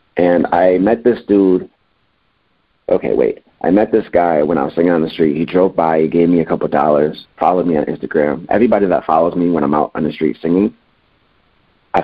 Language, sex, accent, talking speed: English, male, American, 215 wpm